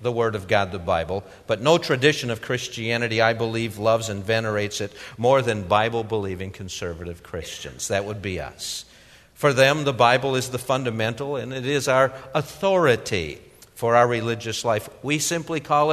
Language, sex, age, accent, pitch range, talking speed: English, male, 50-69, American, 110-150 Hz, 170 wpm